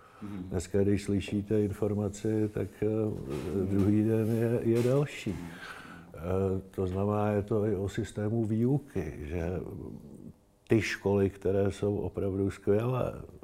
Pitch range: 95-110 Hz